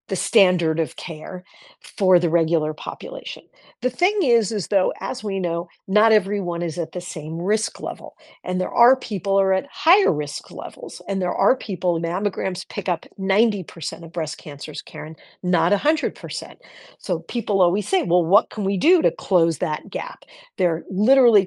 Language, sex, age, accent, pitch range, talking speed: English, female, 50-69, American, 165-215 Hz, 180 wpm